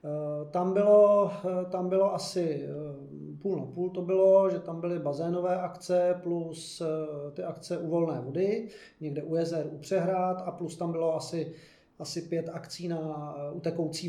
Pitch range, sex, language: 150-170 Hz, male, Czech